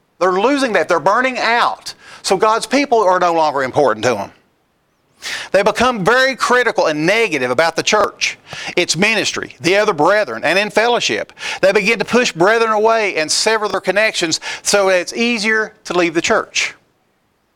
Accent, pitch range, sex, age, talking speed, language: American, 165-210 Hz, male, 40-59, 170 wpm, English